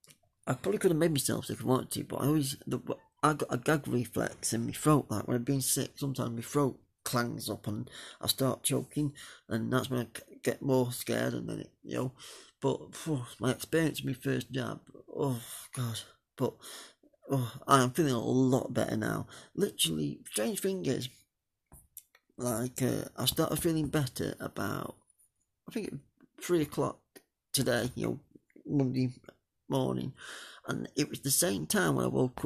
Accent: British